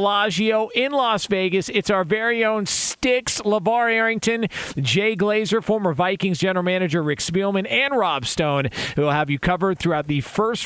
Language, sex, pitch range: English, male, 140-205 Hz